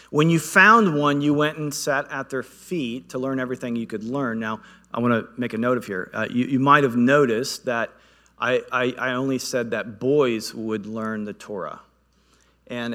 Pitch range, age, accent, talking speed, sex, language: 110-130 Hz, 40-59, American, 210 wpm, male, English